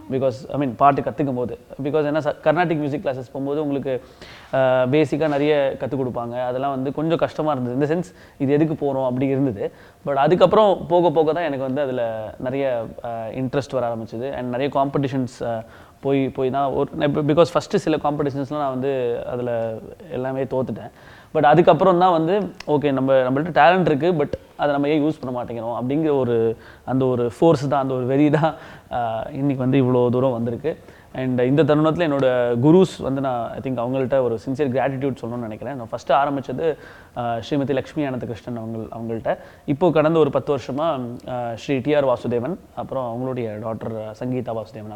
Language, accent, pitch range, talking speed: Tamil, native, 120-150 Hz, 165 wpm